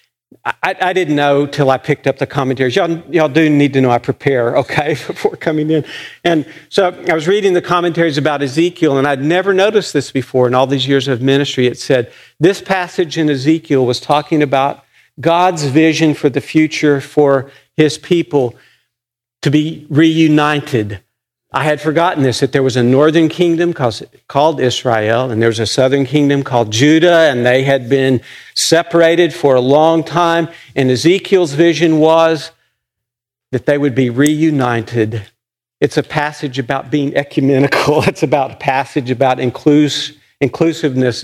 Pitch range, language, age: 130-160 Hz, English, 50-69